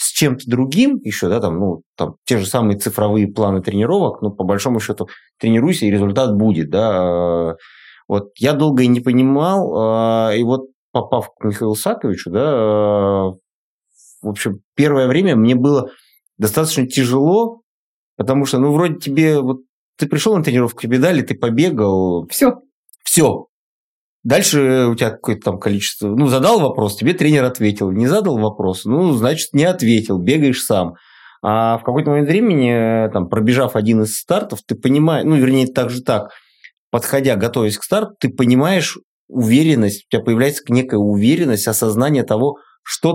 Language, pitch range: Russian, 105-135 Hz